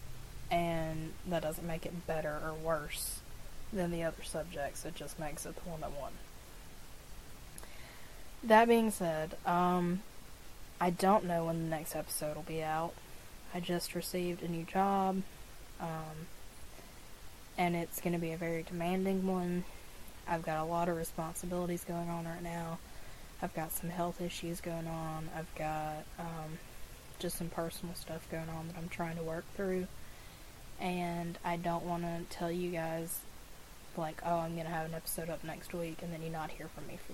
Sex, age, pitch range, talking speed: female, 20-39, 160-175 Hz, 175 wpm